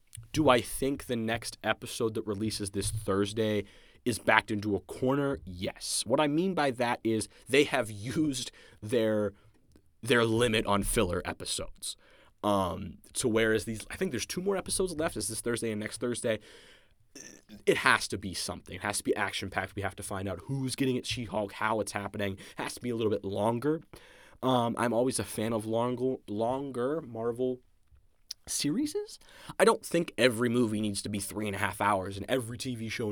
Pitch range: 100-125 Hz